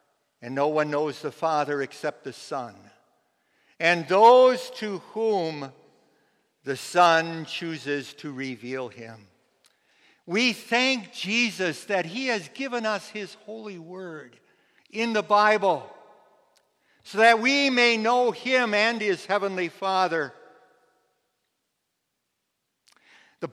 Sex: male